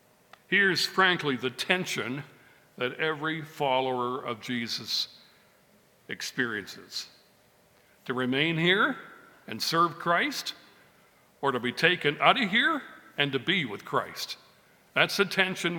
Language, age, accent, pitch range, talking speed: English, 60-79, American, 130-180 Hz, 120 wpm